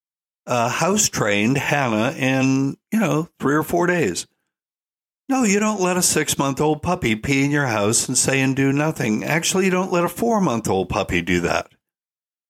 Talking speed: 170 wpm